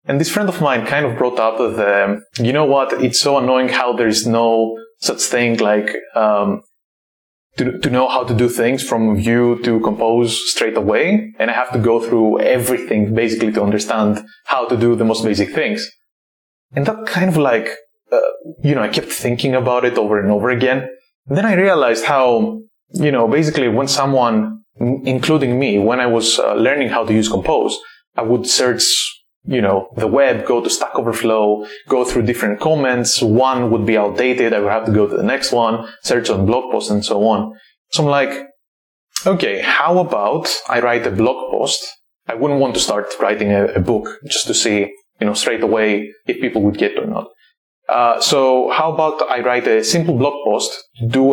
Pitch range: 110-145 Hz